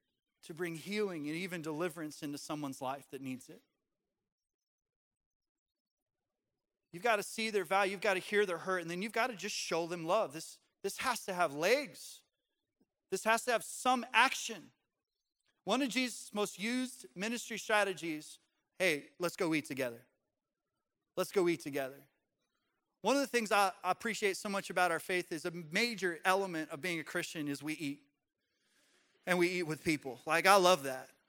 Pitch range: 150-200 Hz